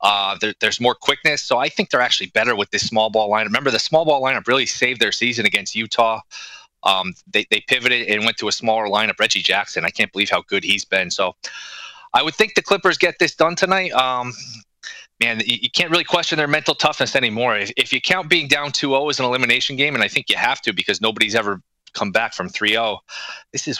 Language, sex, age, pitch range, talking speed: English, male, 20-39, 110-135 Hz, 235 wpm